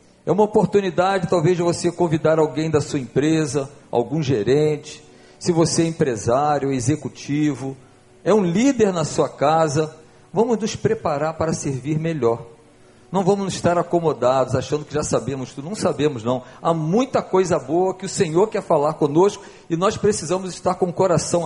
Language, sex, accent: Portuguese, male, Brazilian